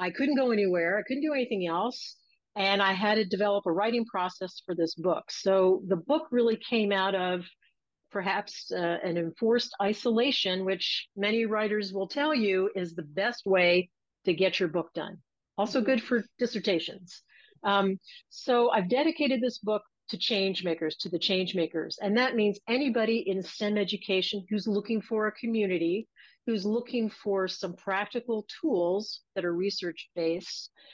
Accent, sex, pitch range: American, female, 180-225 Hz